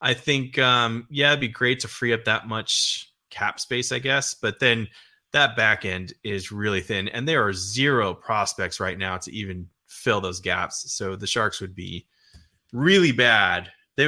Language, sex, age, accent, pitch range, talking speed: English, male, 20-39, American, 105-135 Hz, 190 wpm